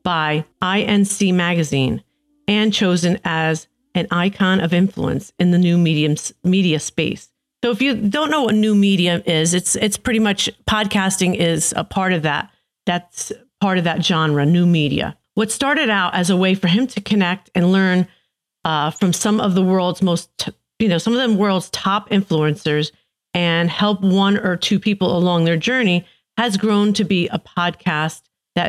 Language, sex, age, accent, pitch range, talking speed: English, female, 40-59, American, 170-215 Hz, 180 wpm